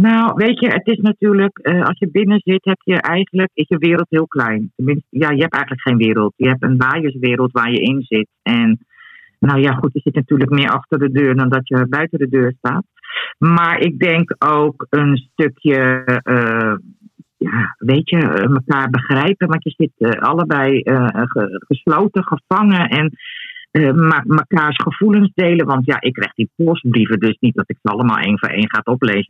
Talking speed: 195 wpm